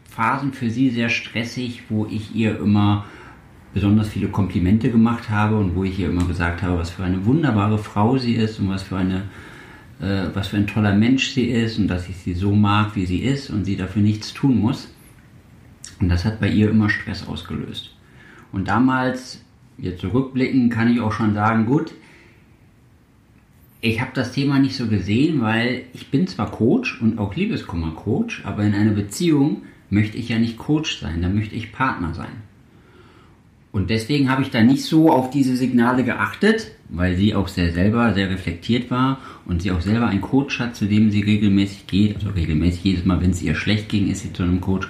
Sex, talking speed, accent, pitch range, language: male, 195 wpm, German, 95-125 Hz, German